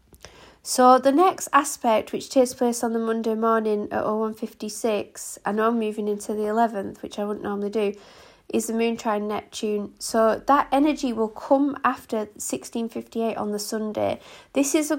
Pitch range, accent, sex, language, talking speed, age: 215-255 Hz, British, female, English, 170 wpm, 30-49